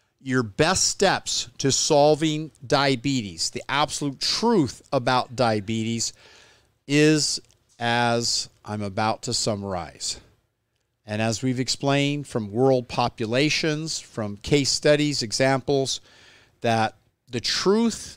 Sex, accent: male, American